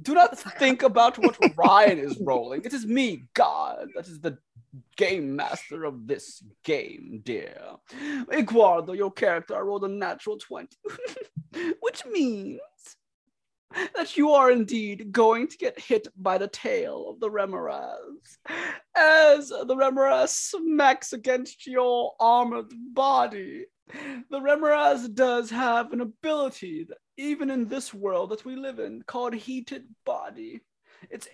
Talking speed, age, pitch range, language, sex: 140 wpm, 20-39, 225-310 Hz, English, male